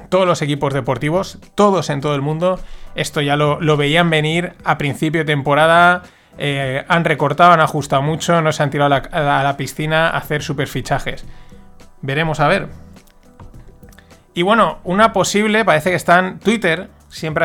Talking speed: 160 wpm